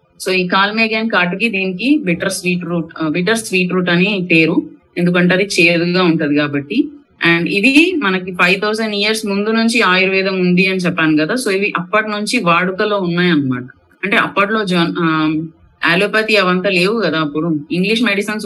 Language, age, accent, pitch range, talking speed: Telugu, 30-49, native, 160-200 Hz, 155 wpm